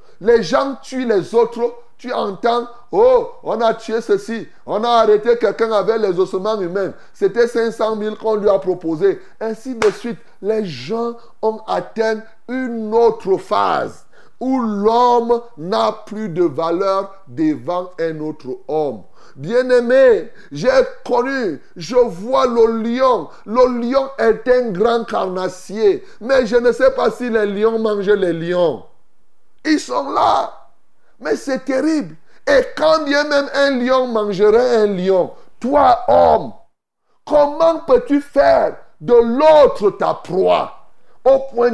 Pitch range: 205-265 Hz